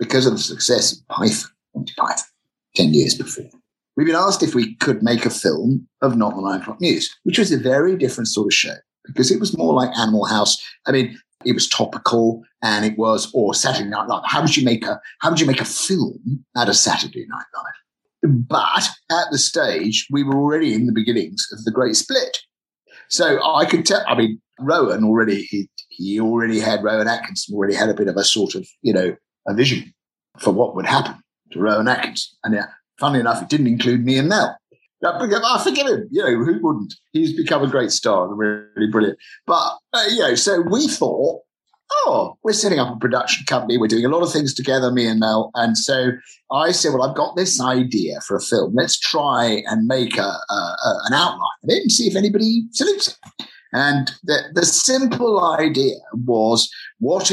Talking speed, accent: 210 wpm, British